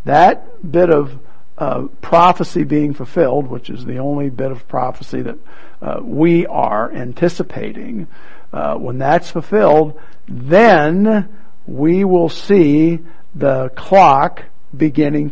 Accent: American